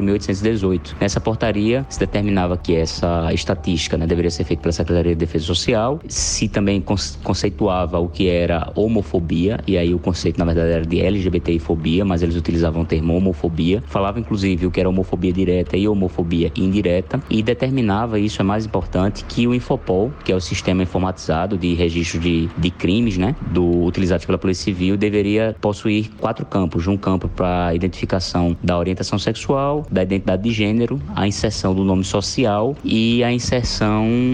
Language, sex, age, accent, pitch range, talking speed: Portuguese, male, 20-39, Brazilian, 90-110 Hz, 170 wpm